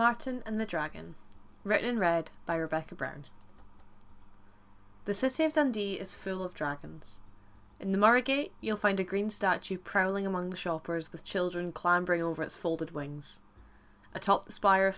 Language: English